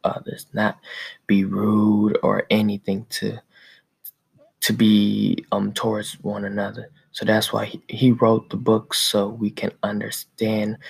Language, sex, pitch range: English, male, 105-110 Hz